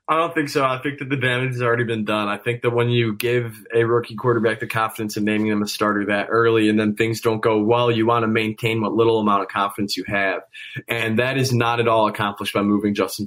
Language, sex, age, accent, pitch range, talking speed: English, male, 20-39, American, 105-125 Hz, 260 wpm